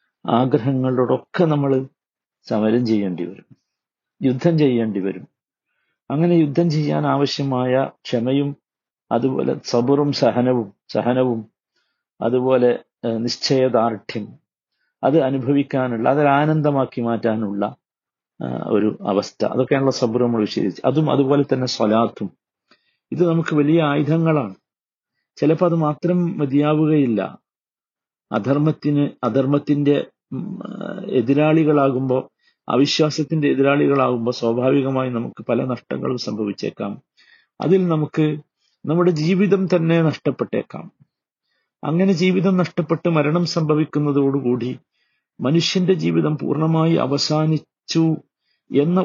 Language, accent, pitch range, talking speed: Malayalam, native, 125-160 Hz, 85 wpm